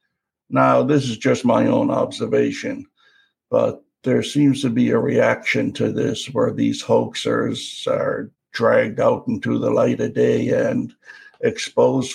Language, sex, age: English, male, 60-79